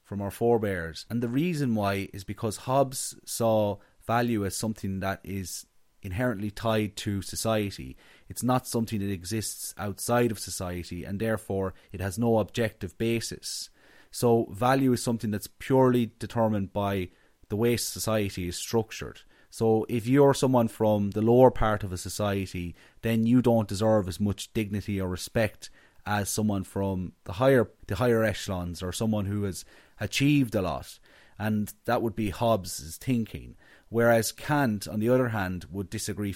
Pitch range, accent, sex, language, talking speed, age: 95-115 Hz, Irish, male, English, 160 wpm, 30-49